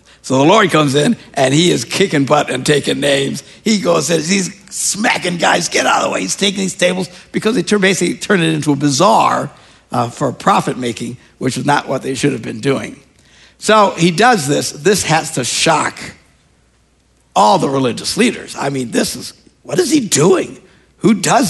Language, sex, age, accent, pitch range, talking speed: English, male, 60-79, American, 140-220 Hz, 200 wpm